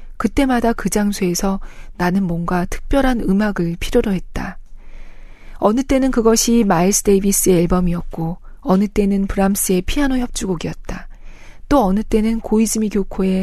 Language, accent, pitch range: Korean, native, 190-230 Hz